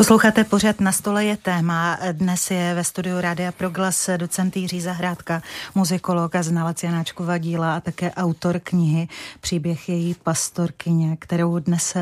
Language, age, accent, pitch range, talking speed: Czech, 30-49, native, 170-185 Hz, 130 wpm